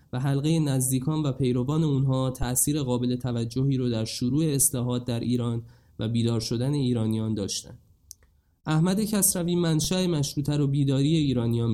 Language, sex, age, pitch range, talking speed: Persian, male, 20-39, 115-135 Hz, 140 wpm